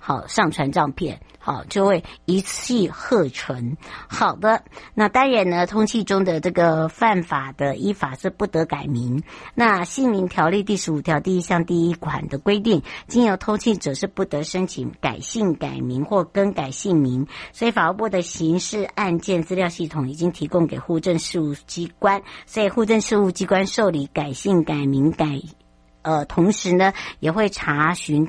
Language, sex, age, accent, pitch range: Chinese, male, 60-79, American, 150-195 Hz